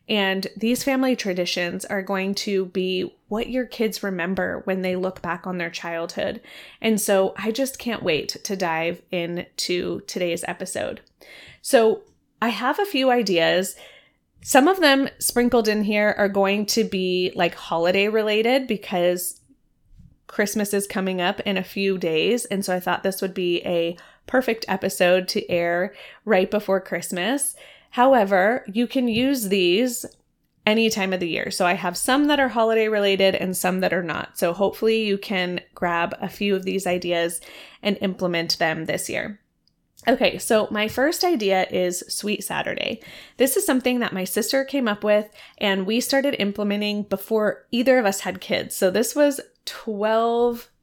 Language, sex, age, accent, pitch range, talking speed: English, female, 20-39, American, 185-235 Hz, 170 wpm